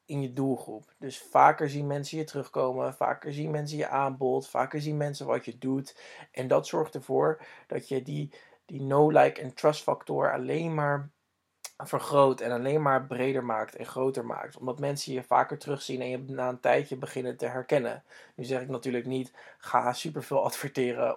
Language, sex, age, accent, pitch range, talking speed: Dutch, male, 20-39, Dutch, 125-155 Hz, 185 wpm